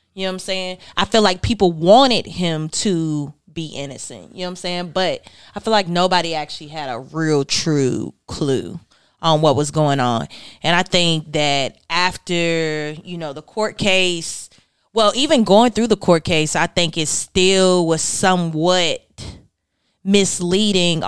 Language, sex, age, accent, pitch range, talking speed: English, female, 20-39, American, 155-195 Hz, 170 wpm